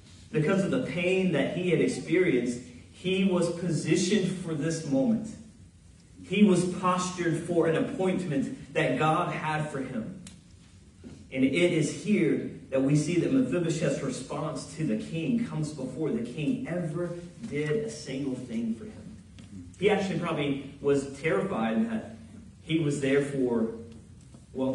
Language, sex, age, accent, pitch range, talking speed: English, male, 30-49, American, 115-175 Hz, 145 wpm